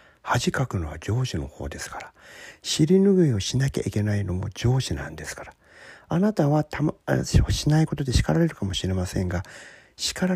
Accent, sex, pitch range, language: native, male, 90-130 Hz, Japanese